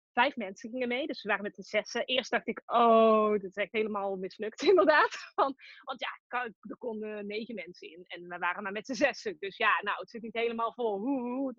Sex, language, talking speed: female, Dutch, 230 wpm